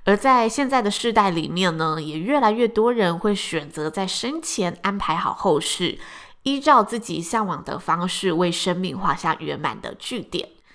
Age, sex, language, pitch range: 20-39, female, Chinese, 175-225 Hz